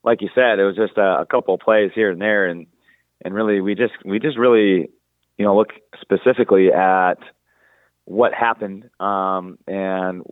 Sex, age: male, 30-49